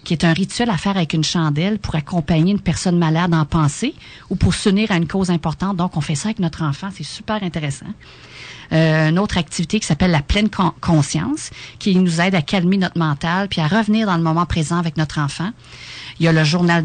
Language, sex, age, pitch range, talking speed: French, female, 40-59, 155-195 Hz, 230 wpm